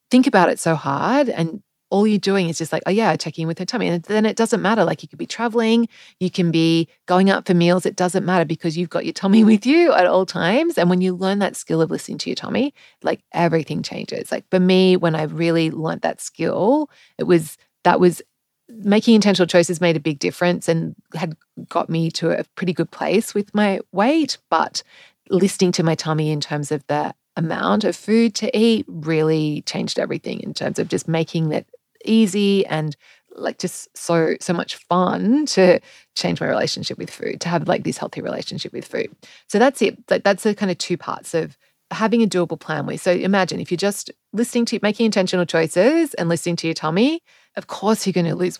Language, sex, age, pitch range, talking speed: English, female, 30-49, 165-215 Hz, 215 wpm